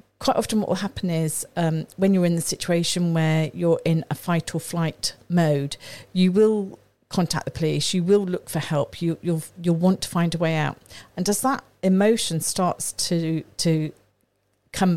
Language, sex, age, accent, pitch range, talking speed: English, female, 50-69, British, 150-180 Hz, 190 wpm